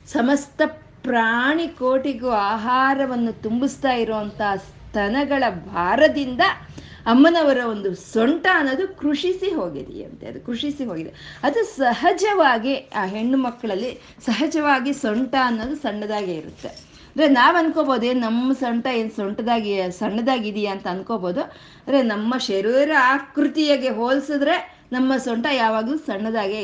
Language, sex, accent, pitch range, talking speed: Kannada, female, native, 220-285 Hz, 105 wpm